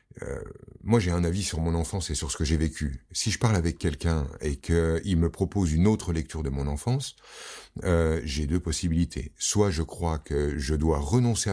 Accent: French